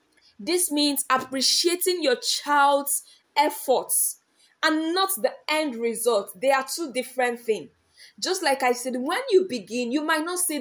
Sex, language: female, English